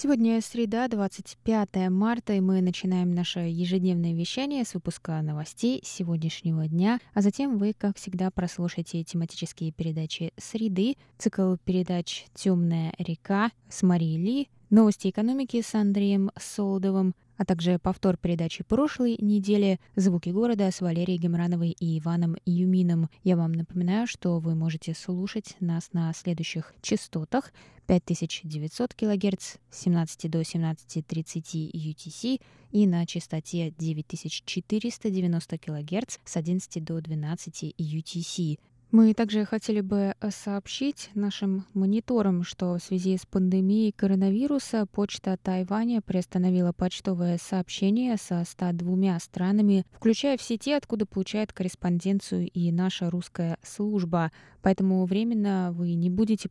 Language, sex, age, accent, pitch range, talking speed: Russian, female, 20-39, native, 170-205 Hz, 120 wpm